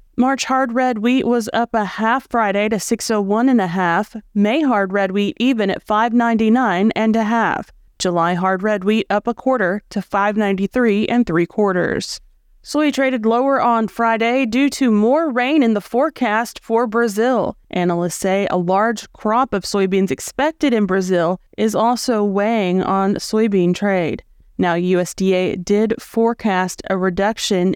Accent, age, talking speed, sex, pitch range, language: American, 30-49, 165 wpm, female, 195-245 Hz, English